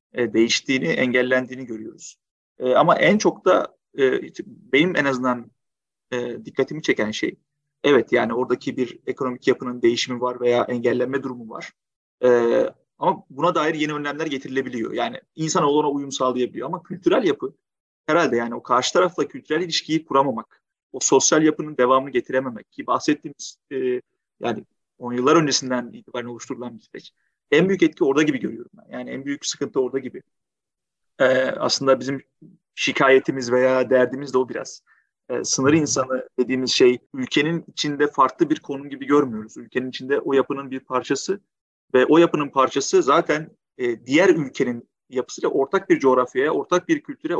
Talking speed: 155 wpm